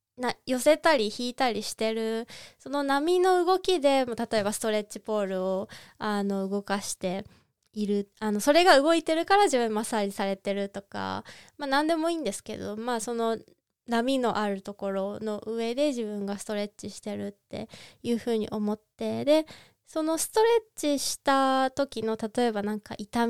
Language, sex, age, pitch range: Japanese, female, 20-39, 200-265 Hz